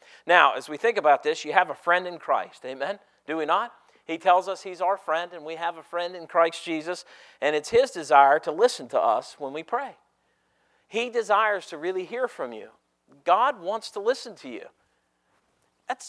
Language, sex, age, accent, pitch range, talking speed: English, male, 50-69, American, 160-225 Hz, 205 wpm